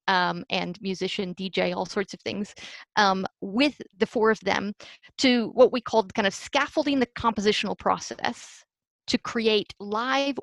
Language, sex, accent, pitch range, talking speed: English, female, American, 190-225 Hz, 155 wpm